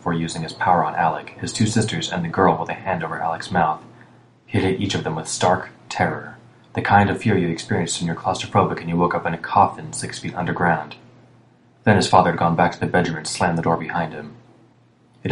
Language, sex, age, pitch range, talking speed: English, male, 20-39, 85-110 Hz, 235 wpm